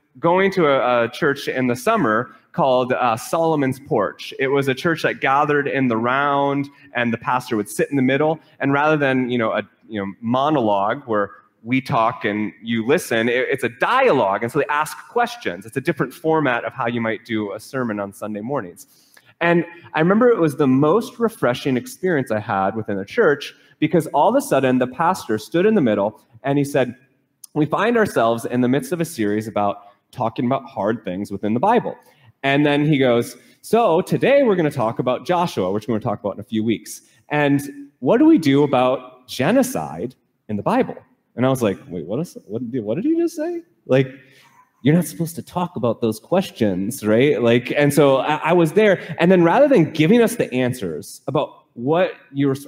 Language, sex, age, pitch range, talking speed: English, male, 30-49, 120-165 Hz, 210 wpm